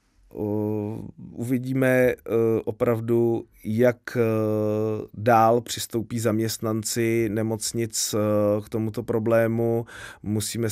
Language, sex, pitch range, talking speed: Czech, male, 100-110 Hz, 60 wpm